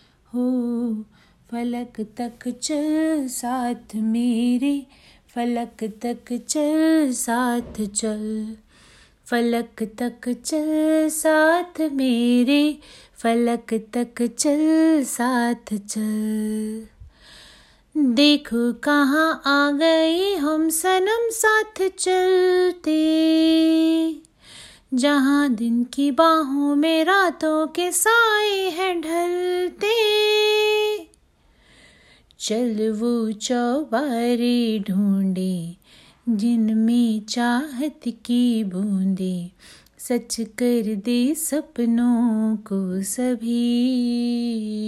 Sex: female